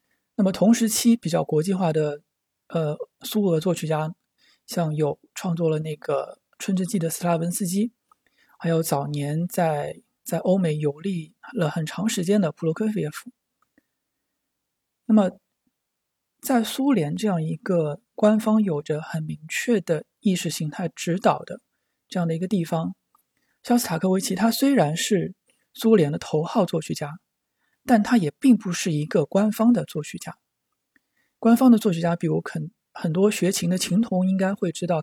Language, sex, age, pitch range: Chinese, male, 20-39, 160-215 Hz